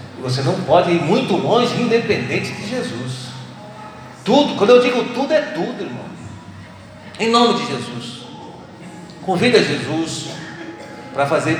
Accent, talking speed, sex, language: Brazilian, 130 wpm, male, Portuguese